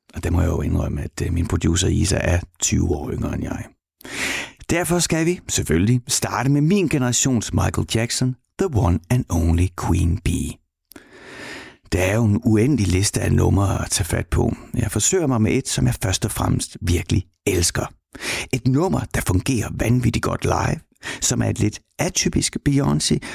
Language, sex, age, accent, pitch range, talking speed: Danish, male, 60-79, native, 95-125 Hz, 175 wpm